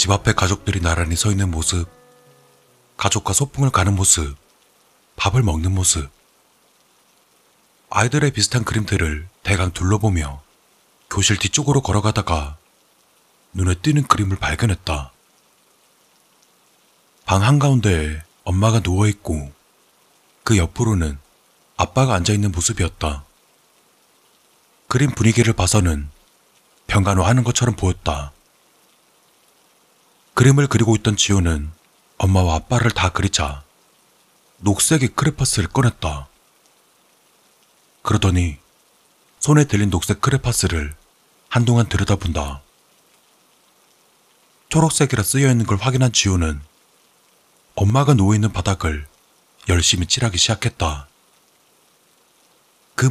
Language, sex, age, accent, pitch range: Korean, male, 30-49, native, 85-115 Hz